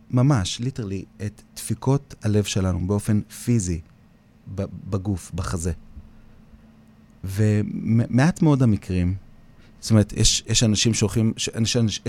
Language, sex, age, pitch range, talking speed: Hebrew, male, 30-49, 95-115 Hz, 105 wpm